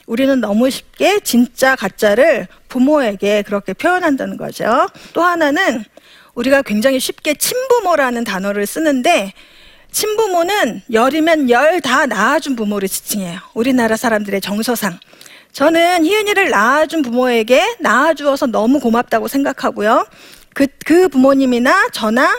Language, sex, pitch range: Korean, female, 235-345 Hz